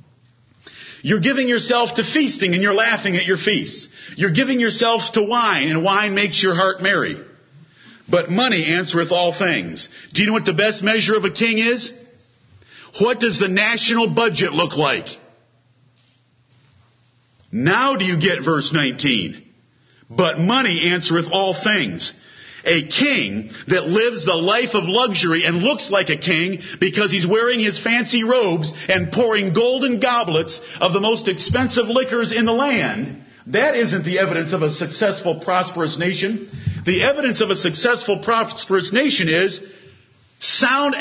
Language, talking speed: English, 155 wpm